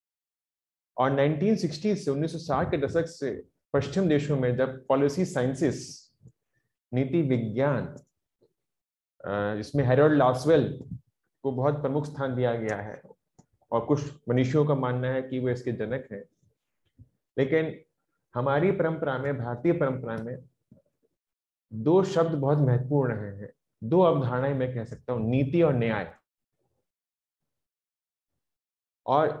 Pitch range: 125-160 Hz